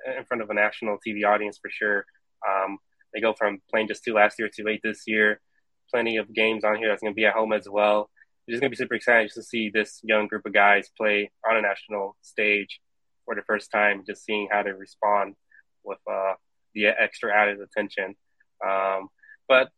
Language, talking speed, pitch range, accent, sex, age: English, 220 wpm, 100-110 Hz, American, male, 20-39